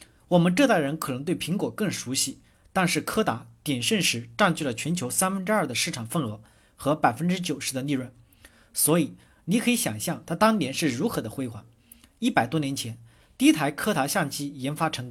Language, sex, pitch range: Chinese, male, 135-210 Hz